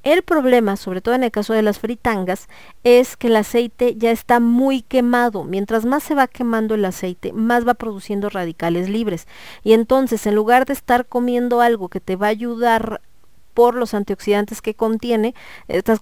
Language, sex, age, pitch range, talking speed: Spanish, female, 40-59, 185-235 Hz, 185 wpm